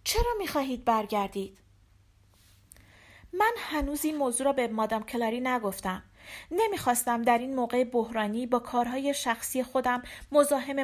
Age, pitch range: 40-59, 200-270 Hz